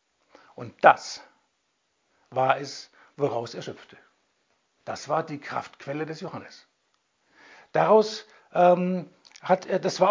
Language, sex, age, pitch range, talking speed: German, male, 60-79, 155-205 Hz, 115 wpm